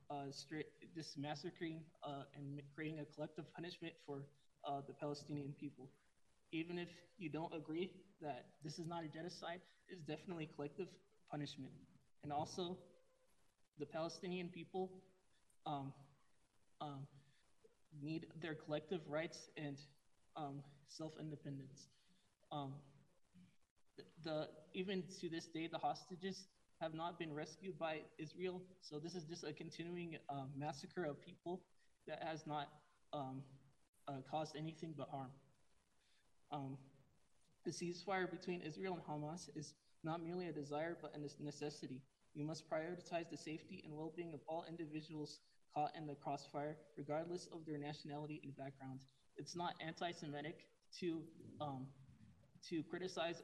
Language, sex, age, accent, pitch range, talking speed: English, male, 20-39, American, 145-170 Hz, 135 wpm